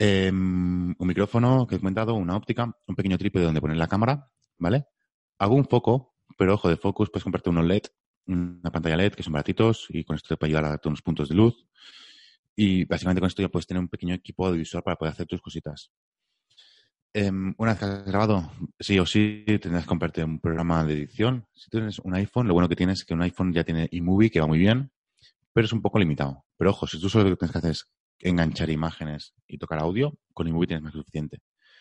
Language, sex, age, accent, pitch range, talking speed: Spanish, male, 30-49, Spanish, 80-105 Hz, 235 wpm